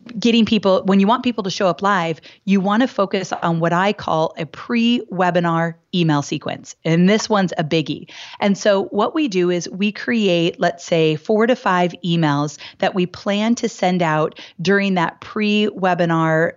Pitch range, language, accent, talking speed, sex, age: 170-210 Hz, English, American, 180 wpm, female, 30-49